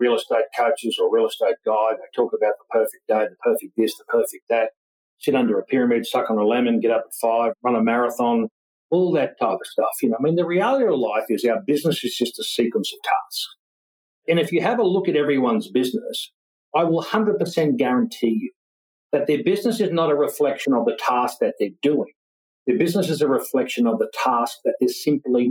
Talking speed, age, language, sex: 225 wpm, 50-69, English, male